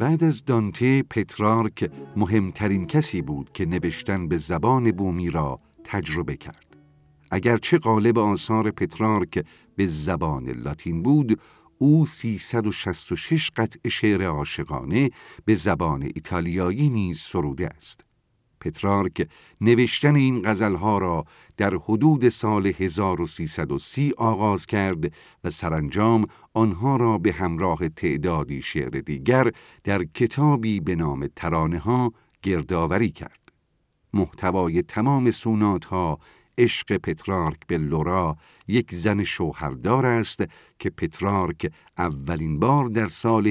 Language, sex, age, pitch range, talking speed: Persian, male, 50-69, 90-115 Hz, 110 wpm